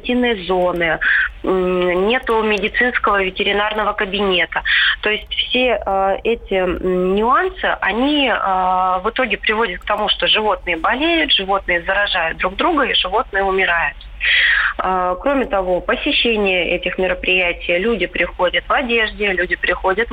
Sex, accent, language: female, native, Russian